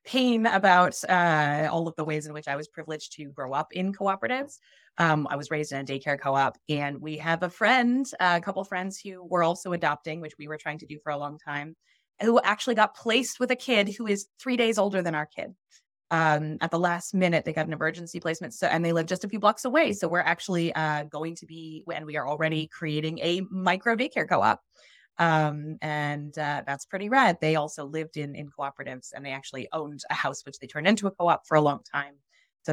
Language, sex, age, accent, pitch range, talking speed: English, female, 20-39, American, 150-195 Hz, 230 wpm